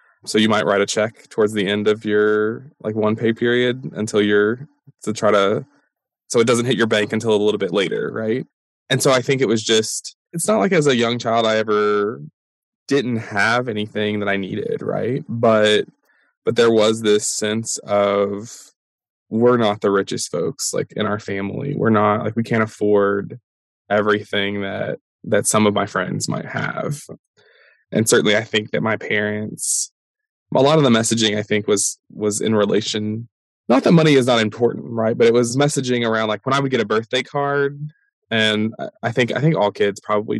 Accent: American